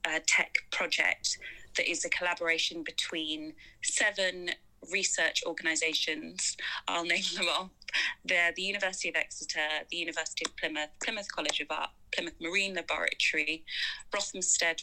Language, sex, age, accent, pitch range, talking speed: English, female, 20-39, British, 160-200 Hz, 130 wpm